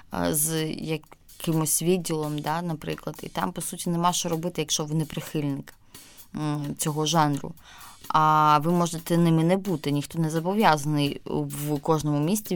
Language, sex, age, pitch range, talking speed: Ukrainian, female, 20-39, 155-180 Hz, 145 wpm